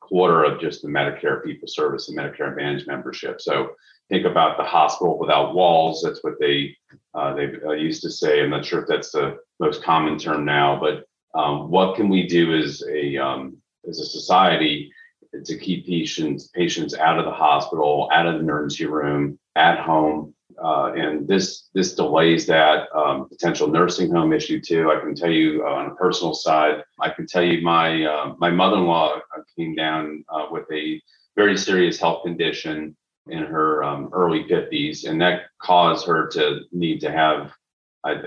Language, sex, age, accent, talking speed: English, male, 40-59, American, 180 wpm